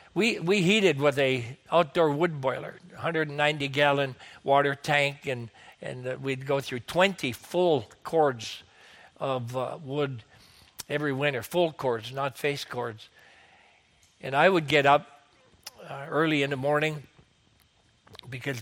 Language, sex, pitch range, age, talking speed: English, male, 135-155 Hz, 60-79, 130 wpm